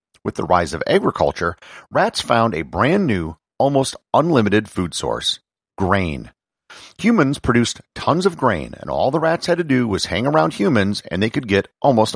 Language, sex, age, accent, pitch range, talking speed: English, male, 40-59, American, 90-130 Hz, 180 wpm